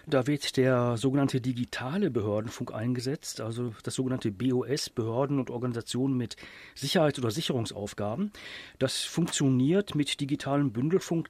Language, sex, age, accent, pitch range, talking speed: German, male, 40-59, German, 125-150 Hz, 120 wpm